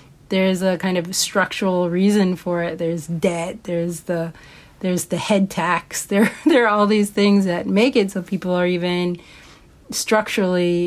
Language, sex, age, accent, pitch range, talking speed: English, female, 30-49, American, 175-205 Hz, 165 wpm